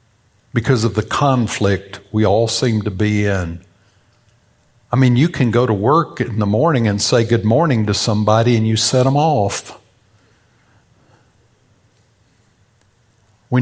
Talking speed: 140 wpm